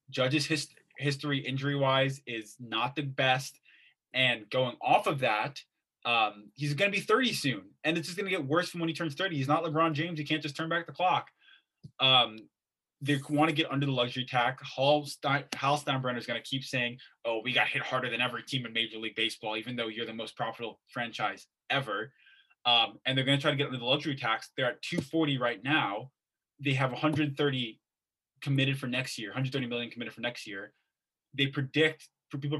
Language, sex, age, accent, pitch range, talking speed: English, male, 20-39, American, 125-150 Hz, 210 wpm